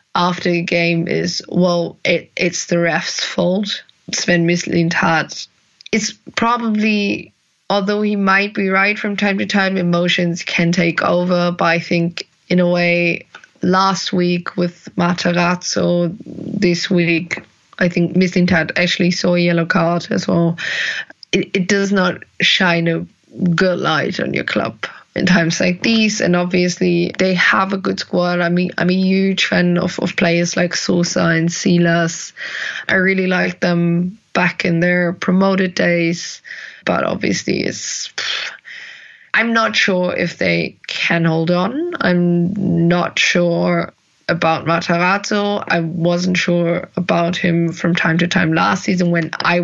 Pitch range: 170-190 Hz